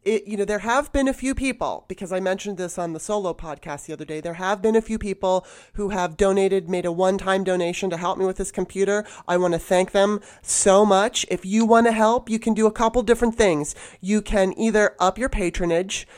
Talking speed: 240 wpm